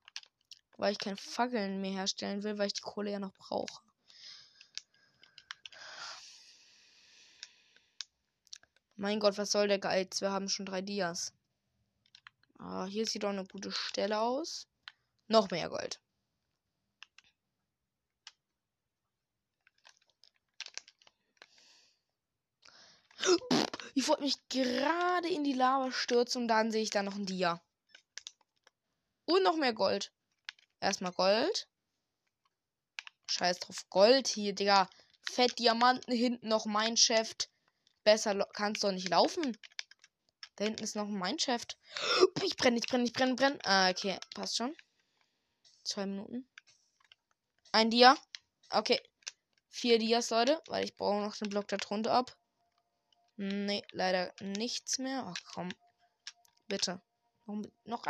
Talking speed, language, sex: 120 wpm, German, female